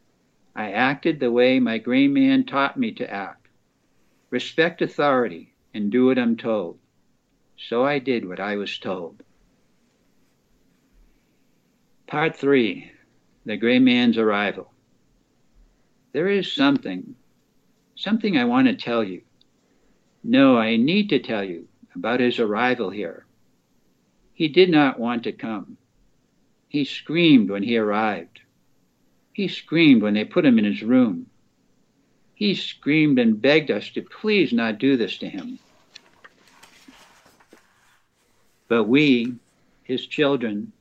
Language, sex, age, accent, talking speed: English, male, 60-79, American, 125 wpm